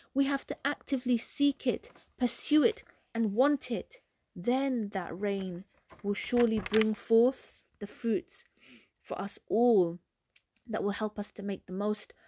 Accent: British